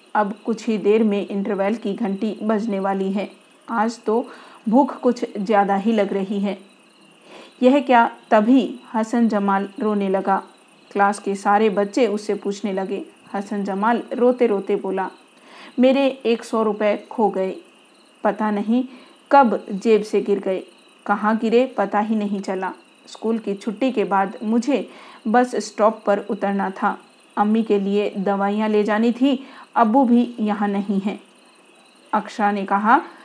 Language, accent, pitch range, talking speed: Hindi, native, 200-245 Hz, 150 wpm